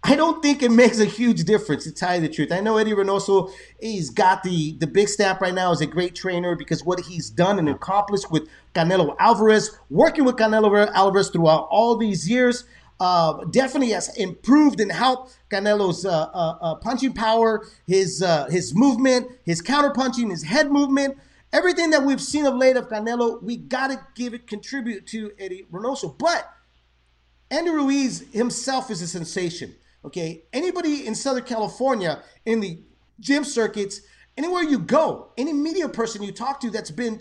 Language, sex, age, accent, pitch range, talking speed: English, male, 30-49, American, 190-270 Hz, 180 wpm